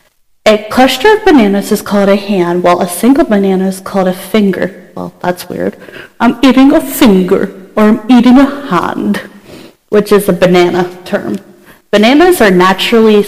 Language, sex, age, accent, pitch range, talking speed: English, female, 40-59, American, 195-245 Hz, 165 wpm